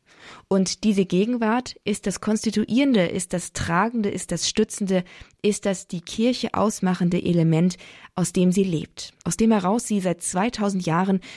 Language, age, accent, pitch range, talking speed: German, 20-39, German, 170-210 Hz, 155 wpm